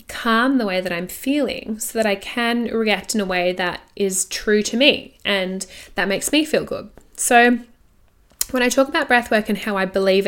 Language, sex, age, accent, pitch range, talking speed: English, female, 10-29, Australian, 195-240 Hz, 210 wpm